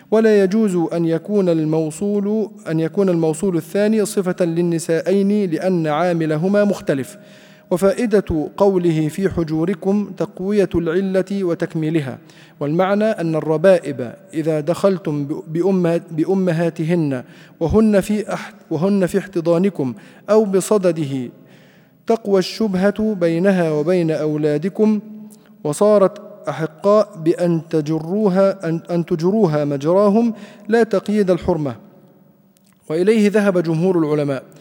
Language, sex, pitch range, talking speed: Arabic, male, 160-200 Hz, 95 wpm